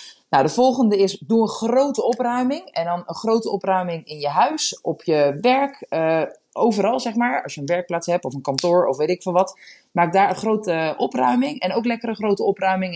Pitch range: 170-225 Hz